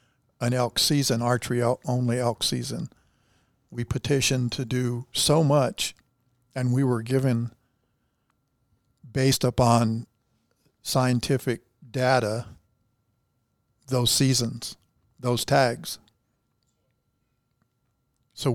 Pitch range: 115-130 Hz